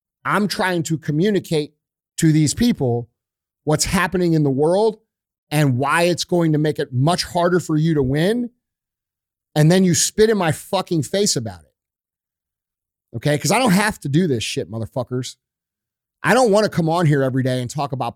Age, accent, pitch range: 40-59, American, 145-195 Hz